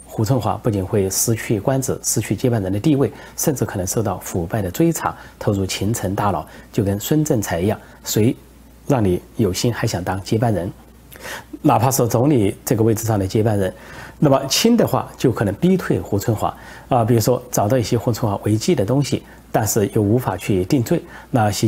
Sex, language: male, Chinese